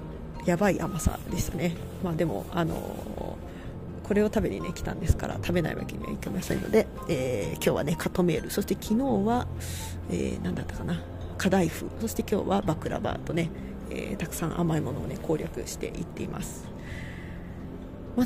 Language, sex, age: Japanese, female, 40-59